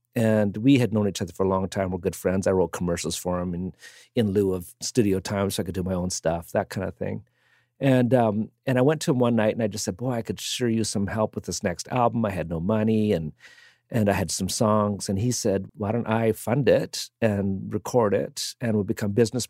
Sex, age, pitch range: male, 50-69, 100-120 Hz